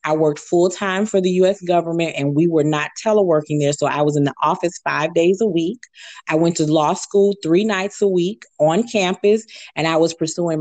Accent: American